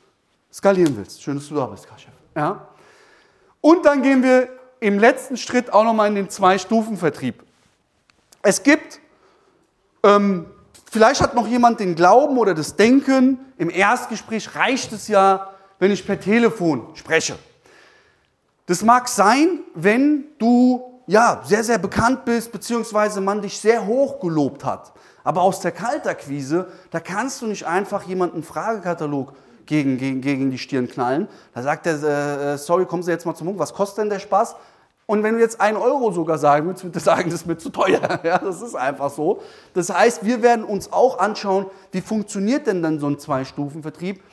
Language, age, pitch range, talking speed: German, 30-49, 170-235 Hz, 175 wpm